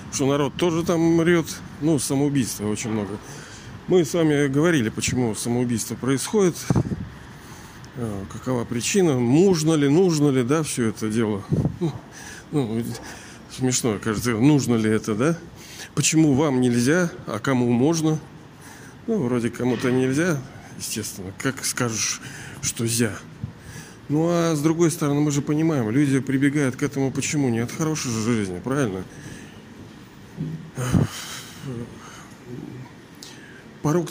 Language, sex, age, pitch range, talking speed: Russian, male, 40-59, 115-155 Hz, 120 wpm